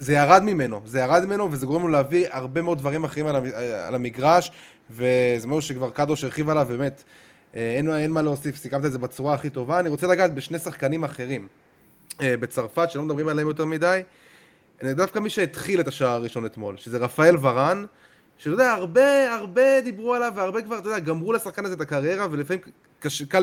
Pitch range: 135-175 Hz